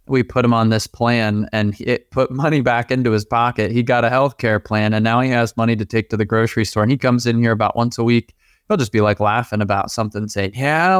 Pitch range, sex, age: 105-125 Hz, male, 20-39